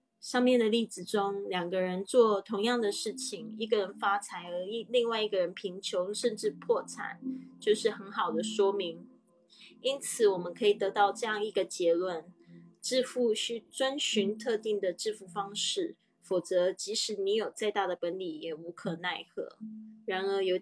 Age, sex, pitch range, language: 20-39, female, 185-240 Hz, Chinese